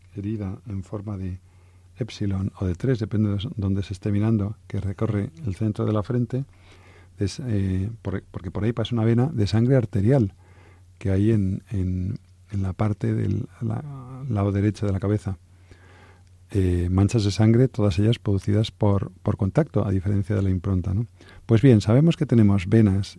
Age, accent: 40-59, Spanish